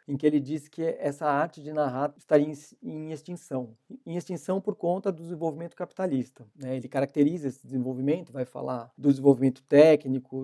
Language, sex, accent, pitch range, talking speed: Portuguese, male, Brazilian, 135-155 Hz, 165 wpm